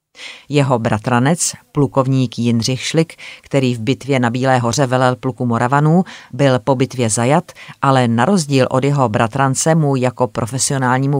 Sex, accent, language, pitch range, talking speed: female, native, Czech, 125-150 Hz, 145 wpm